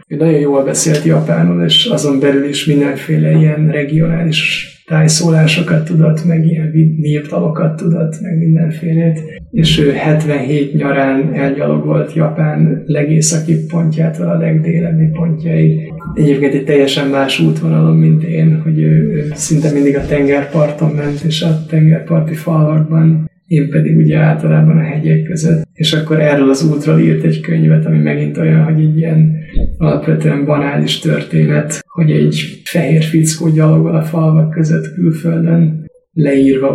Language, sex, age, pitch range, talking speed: Hungarian, male, 20-39, 145-160 Hz, 135 wpm